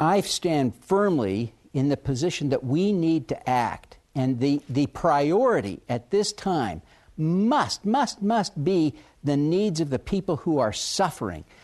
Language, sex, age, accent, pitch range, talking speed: English, male, 60-79, American, 130-165 Hz, 155 wpm